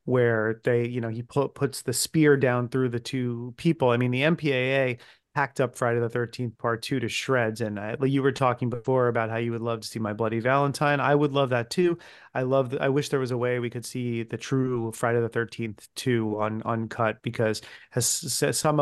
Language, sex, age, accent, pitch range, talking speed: English, male, 30-49, American, 115-140 Hz, 220 wpm